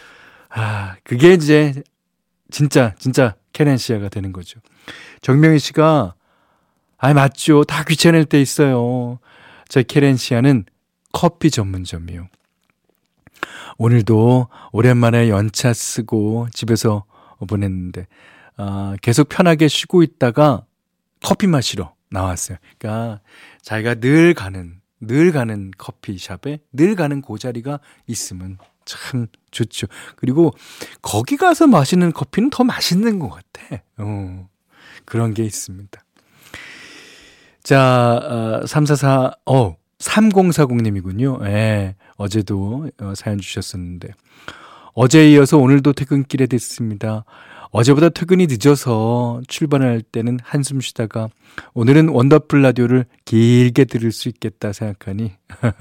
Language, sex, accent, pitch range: Korean, male, native, 105-145 Hz